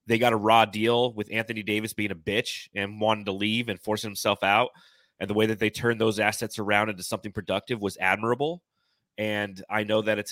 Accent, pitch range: American, 100-115 Hz